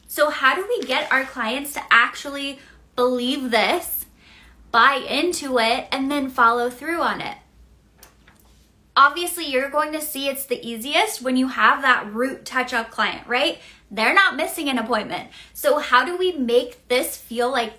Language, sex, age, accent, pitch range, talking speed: English, female, 10-29, American, 240-295 Hz, 165 wpm